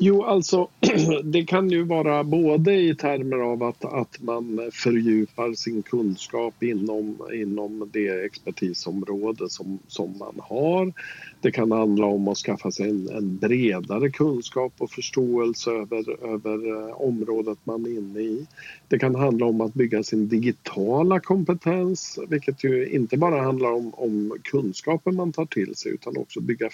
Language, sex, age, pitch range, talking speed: Swedish, male, 50-69, 110-130 Hz, 155 wpm